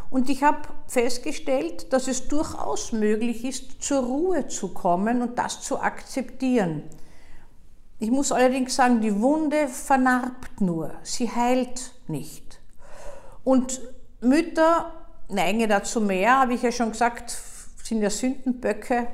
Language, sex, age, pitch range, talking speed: German, female, 50-69, 220-275 Hz, 130 wpm